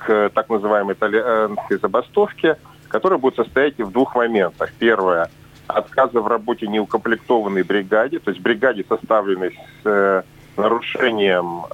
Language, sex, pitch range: Russian, male, 100-120 Hz